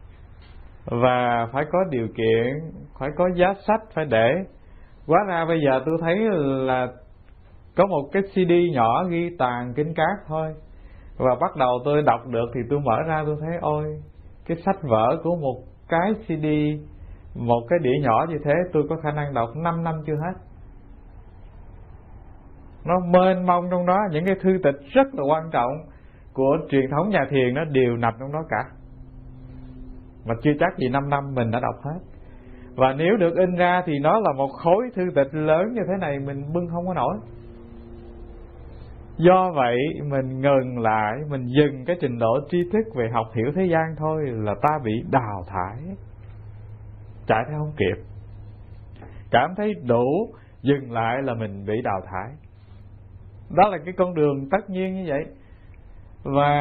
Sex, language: male, English